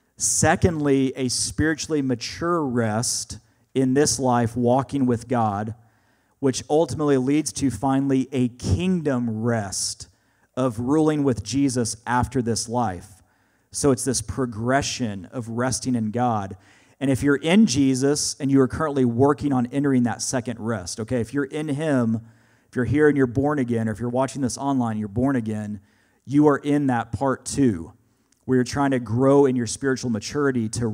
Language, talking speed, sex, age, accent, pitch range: English, 165 wpm, male, 40-59, American, 110-135 Hz